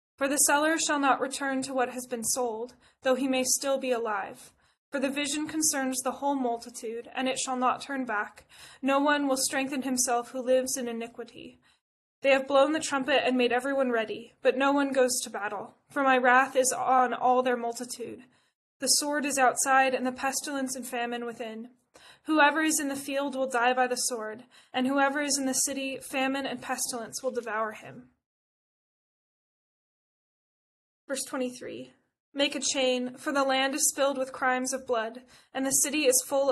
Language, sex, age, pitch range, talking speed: English, female, 10-29, 245-275 Hz, 185 wpm